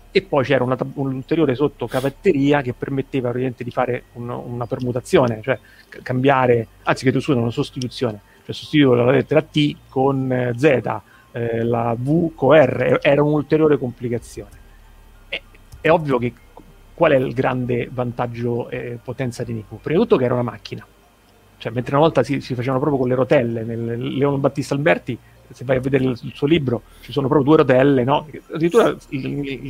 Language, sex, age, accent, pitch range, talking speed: Italian, male, 30-49, native, 120-140 Hz, 180 wpm